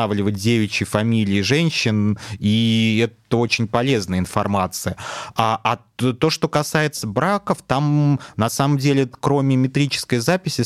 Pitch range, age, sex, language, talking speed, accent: 105-130 Hz, 30-49, male, Russian, 125 wpm, native